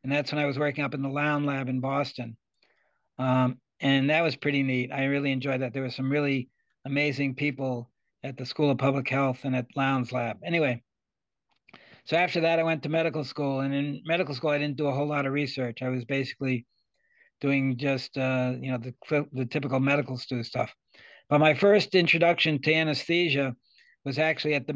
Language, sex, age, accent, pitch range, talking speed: English, male, 60-79, American, 135-150 Hz, 205 wpm